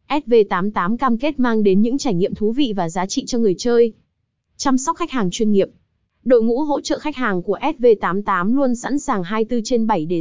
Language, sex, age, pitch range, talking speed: Vietnamese, female, 20-39, 200-255 Hz, 215 wpm